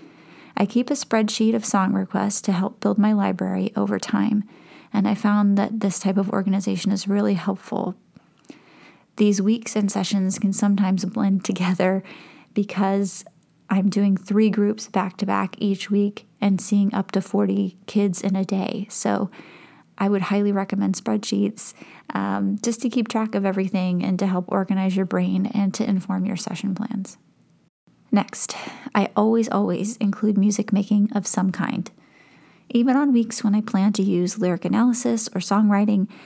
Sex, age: female, 30-49